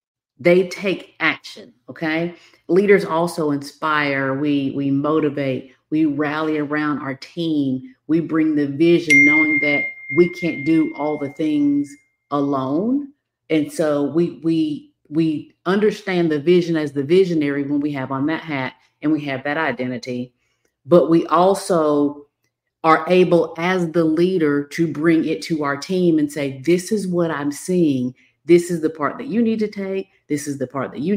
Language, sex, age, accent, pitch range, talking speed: English, female, 40-59, American, 140-175 Hz, 165 wpm